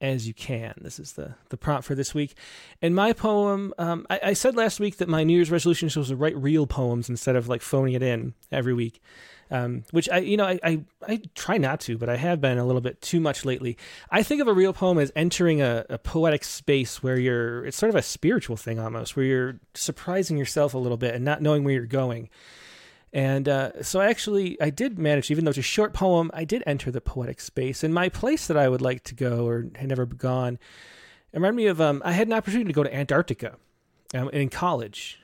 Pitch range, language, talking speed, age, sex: 125-165 Hz, English, 240 wpm, 30-49, male